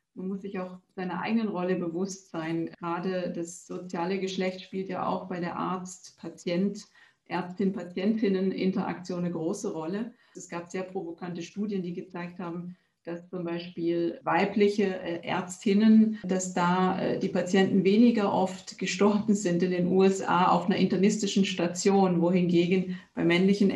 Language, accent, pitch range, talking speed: German, German, 170-195 Hz, 135 wpm